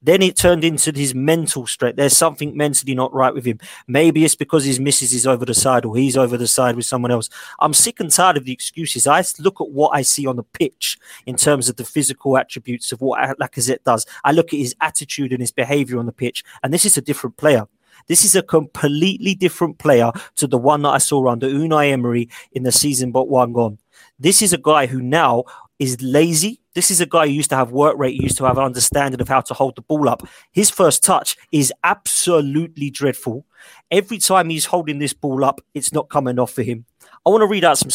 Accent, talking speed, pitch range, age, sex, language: British, 240 wpm, 130-160 Hz, 20-39, male, English